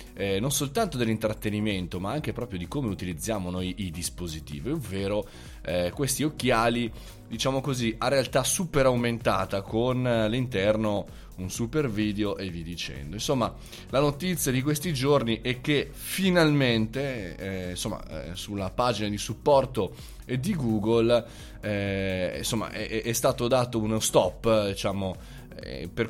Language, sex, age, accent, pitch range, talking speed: Italian, male, 20-39, native, 95-125 Hz, 135 wpm